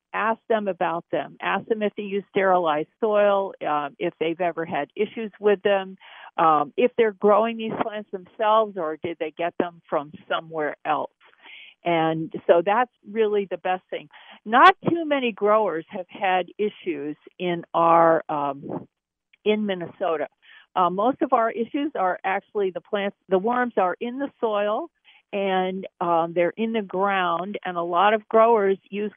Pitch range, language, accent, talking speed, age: 175-220 Hz, English, American, 165 wpm, 50-69